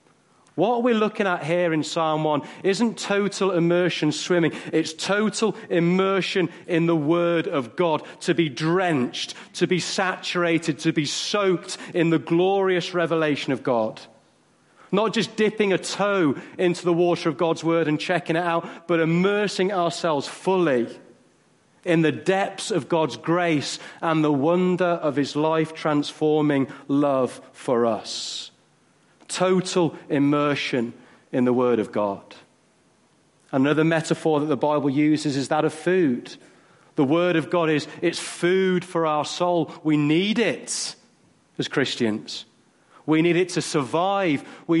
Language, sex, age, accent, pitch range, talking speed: English, male, 40-59, British, 155-180 Hz, 145 wpm